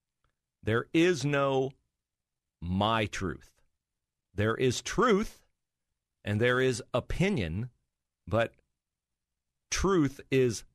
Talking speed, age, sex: 85 wpm, 40-59, male